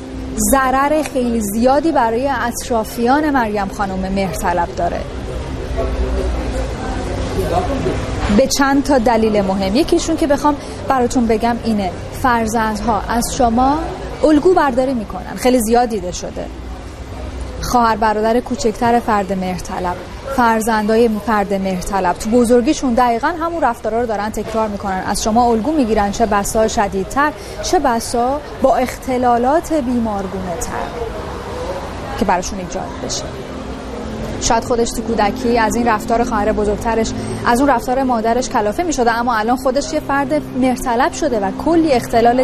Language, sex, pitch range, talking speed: Persian, female, 210-255 Hz, 130 wpm